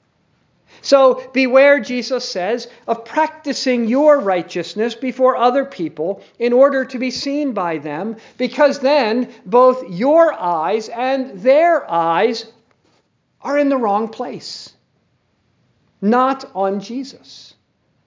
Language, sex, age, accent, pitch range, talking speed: English, male, 50-69, American, 215-265 Hz, 115 wpm